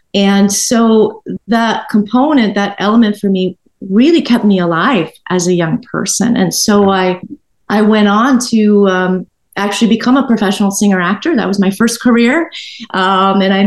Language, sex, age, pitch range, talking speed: English, female, 40-59, 185-230 Hz, 165 wpm